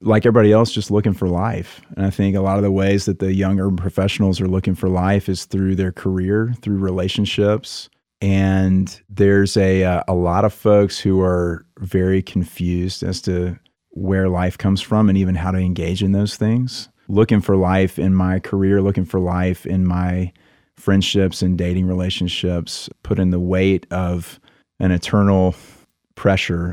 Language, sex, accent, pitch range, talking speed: English, male, American, 90-100 Hz, 175 wpm